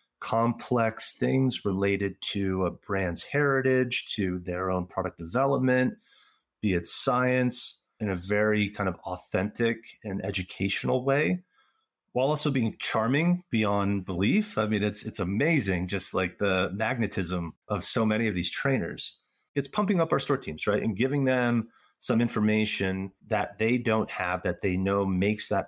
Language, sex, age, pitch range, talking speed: English, male, 30-49, 95-125 Hz, 155 wpm